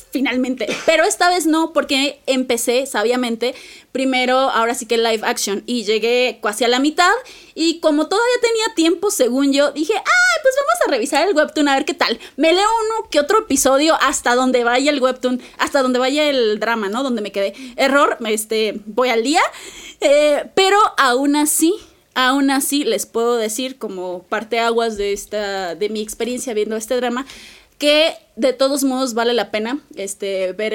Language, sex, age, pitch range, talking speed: Spanish, female, 20-39, 230-310 Hz, 180 wpm